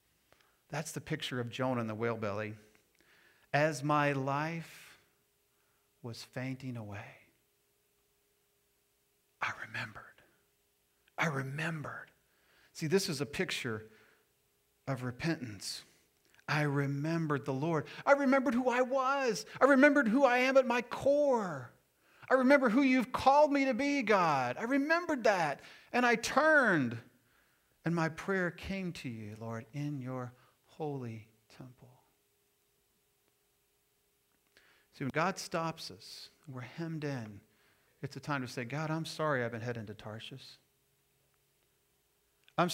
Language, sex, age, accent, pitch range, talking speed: English, male, 40-59, American, 120-165 Hz, 130 wpm